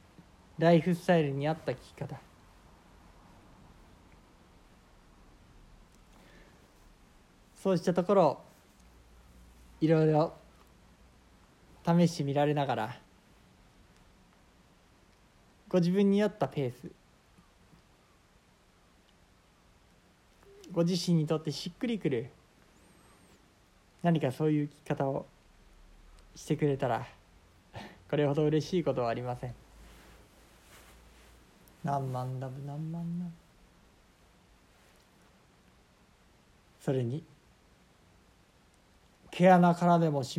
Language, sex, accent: Japanese, male, native